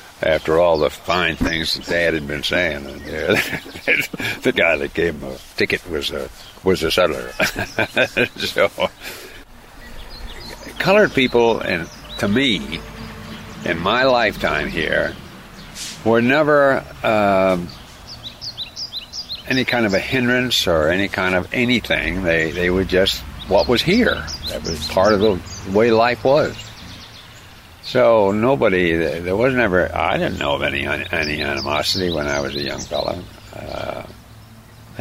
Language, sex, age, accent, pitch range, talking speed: English, male, 60-79, American, 85-115 Hz, 140 wpm